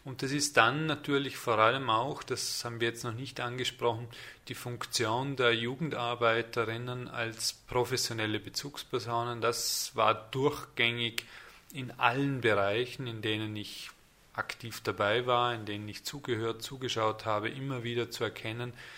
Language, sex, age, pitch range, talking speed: German, male, 30-49, 115-135 Hz, 140 wpm